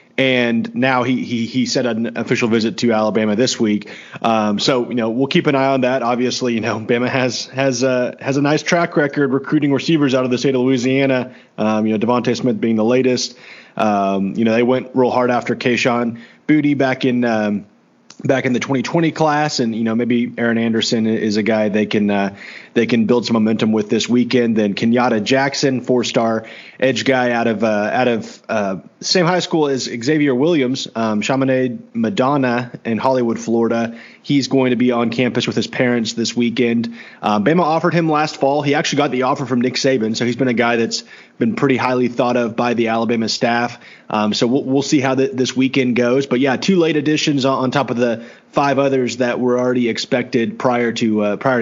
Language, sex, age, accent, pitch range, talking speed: English, male, 30-49, American, 115-135 Hz, 210 wpm